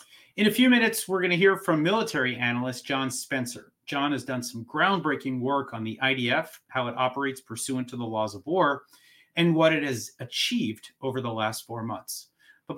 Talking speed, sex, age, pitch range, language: 195 wpm, male, 30-49, 120-160 Hz, English